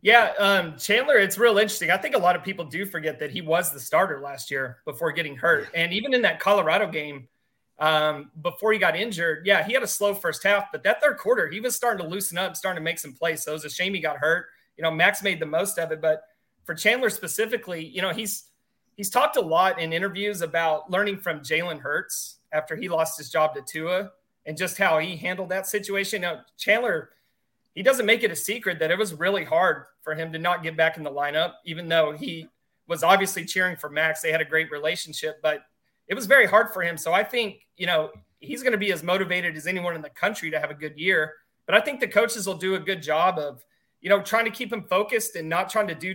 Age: 30-49